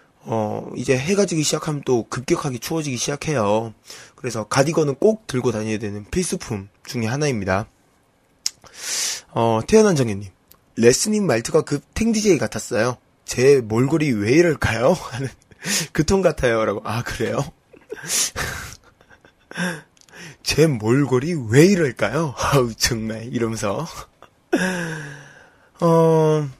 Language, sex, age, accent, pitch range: Korean, male, 20-39, native, 110-150 Hz